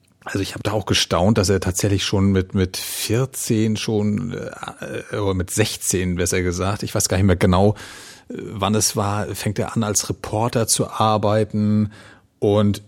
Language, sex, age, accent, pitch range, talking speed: German, male, 40-59, German, 95-115 Hz, 170 wpm